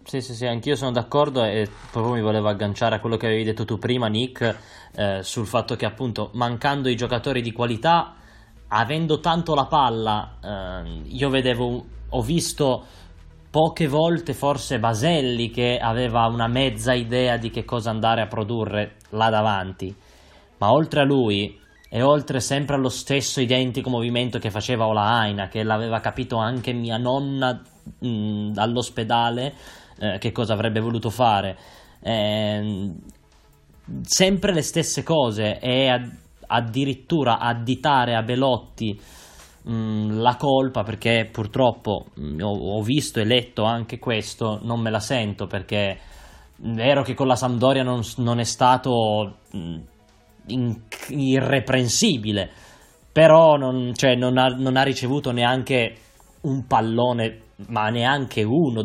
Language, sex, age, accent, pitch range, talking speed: Italian, male, 20-39, native, 110-130 Hz, 135 wpm